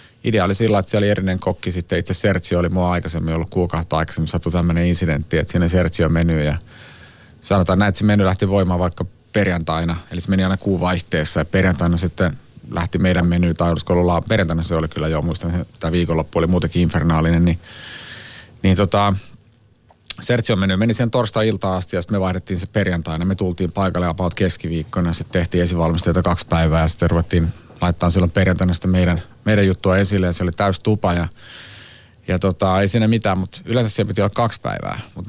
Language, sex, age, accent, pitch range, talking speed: Finnish, male, 30-49, native, 85-100 Hz, 190 wpm